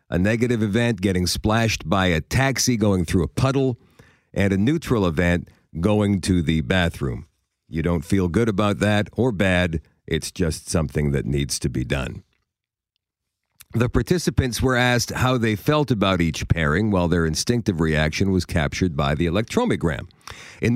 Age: 50-69